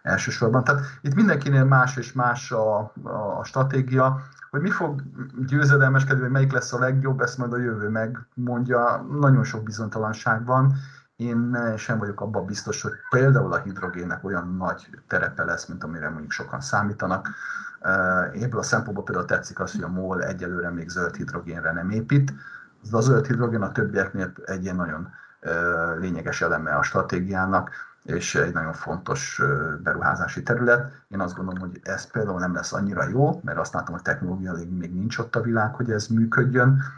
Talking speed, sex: 170 wpm, male